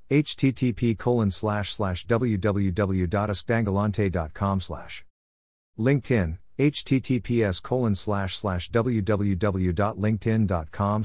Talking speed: 65 wpm